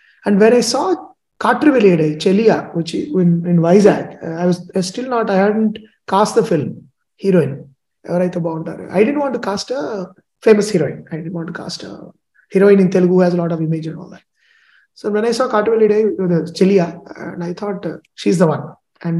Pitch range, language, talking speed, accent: 170-215 Hz, Telugu, 220 wpm, native